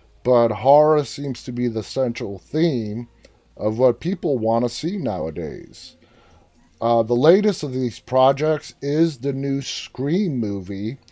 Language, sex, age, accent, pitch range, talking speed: English, male, 30-49, American, 115-145 Hz, 140 wpm